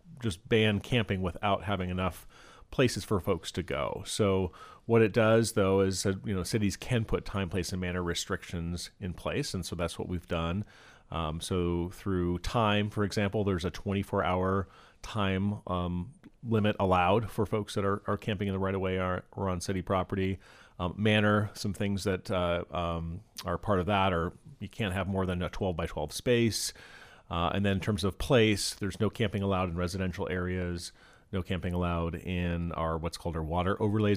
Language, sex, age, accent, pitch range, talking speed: English, male, 40-59, American, 90-105 Hz, 190 wpm